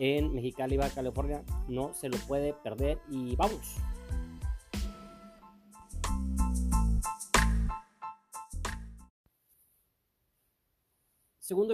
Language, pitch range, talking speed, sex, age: Spanish, 115-155 Hz, 60 wpm, male, 40-59